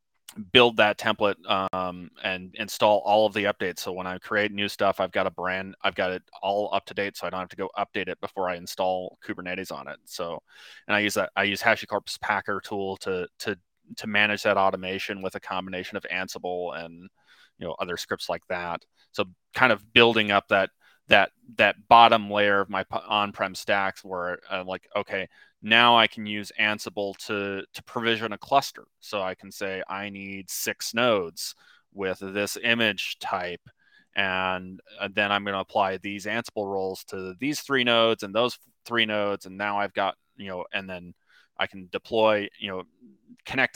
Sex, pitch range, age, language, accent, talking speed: male, 95-105 Hz, 30-49, English, American, 195 wpm